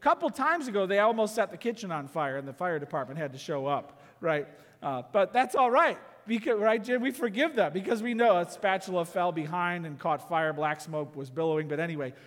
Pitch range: 160-235 Hz